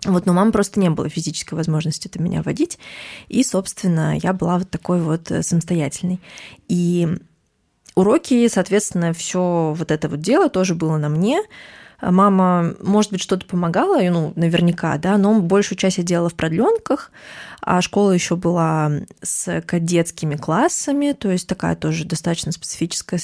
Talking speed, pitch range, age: 155 wpm, 155-195 Hz, 20-39